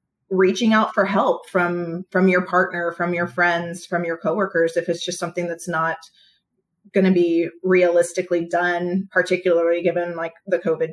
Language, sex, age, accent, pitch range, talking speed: English, female, 30-49, American, 175-195 Hz, 160 wpm